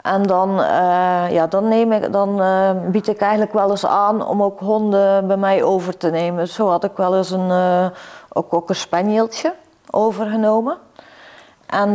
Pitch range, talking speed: 195-235 Hz, 180 wpm